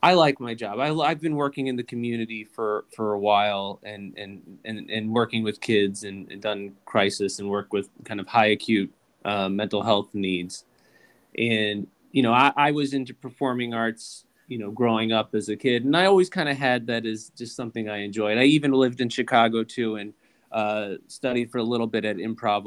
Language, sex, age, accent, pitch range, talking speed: English, male, 20-39, American, 110-140 Hz, 210 wpm